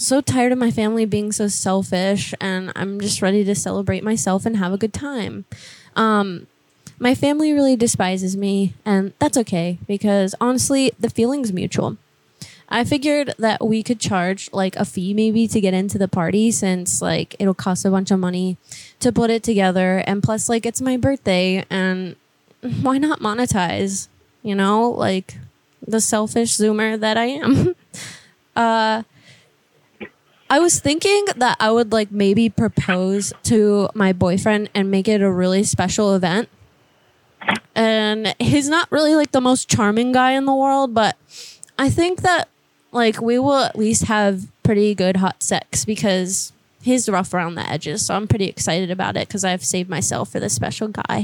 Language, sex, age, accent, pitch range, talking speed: English, female, 20-39, American, 190-235 Hz, 170 wpm